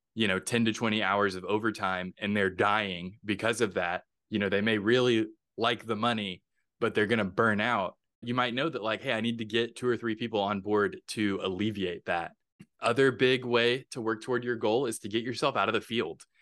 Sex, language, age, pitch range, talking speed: male, English, 20-39, 105-120 Hz, 230 wpm